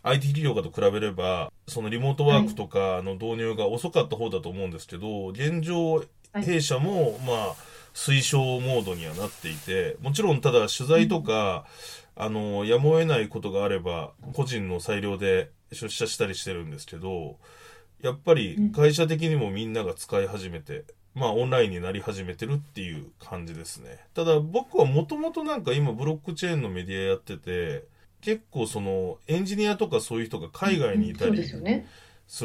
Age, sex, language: 20-39, male, Japanese